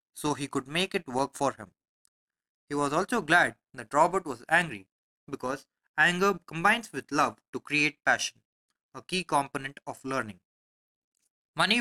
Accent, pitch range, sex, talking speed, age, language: Indian, 135-180 Hz, male, 150 wpm, 20-39, English